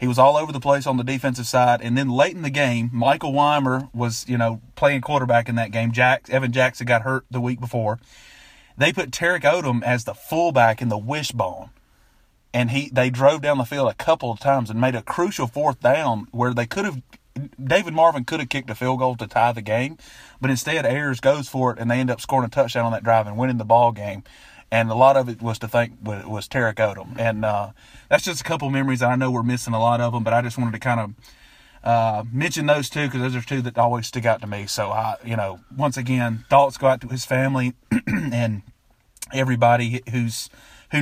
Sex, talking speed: male, 240 wpm